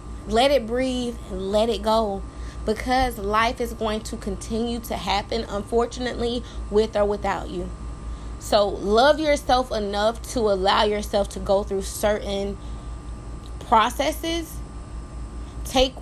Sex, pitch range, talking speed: female, 200-240 Hz, 125 wpm